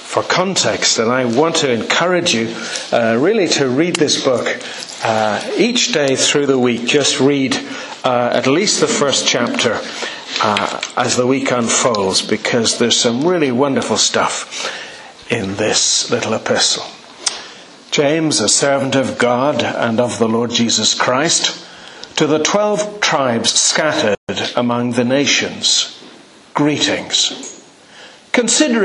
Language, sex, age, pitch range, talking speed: English, male, 50-69, 125-165 Hz, 135 wpm